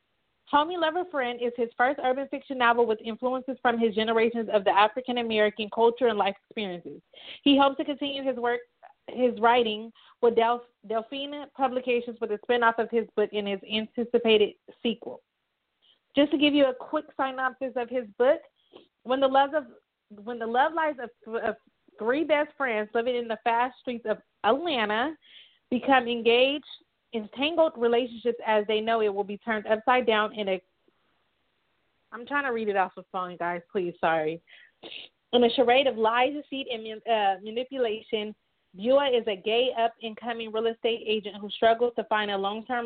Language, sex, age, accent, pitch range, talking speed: English, female, 30-49, American, 215-255 Hz, 170 wpm